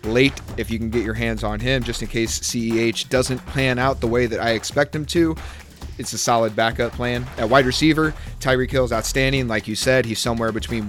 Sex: male